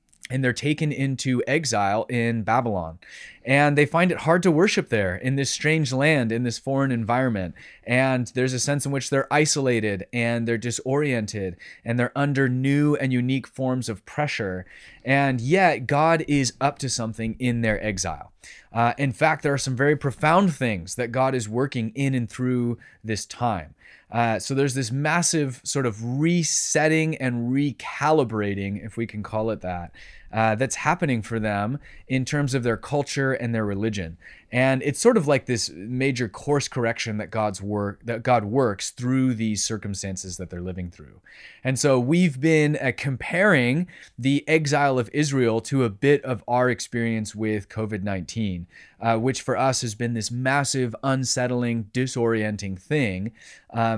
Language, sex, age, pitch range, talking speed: English, male, 20-39, 110-140 Hz, 170 wpm